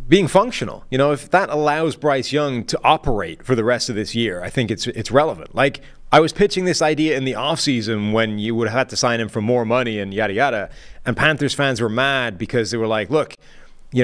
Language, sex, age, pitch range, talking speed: English, male, 30-49, 115-145 Hz, 240 wpm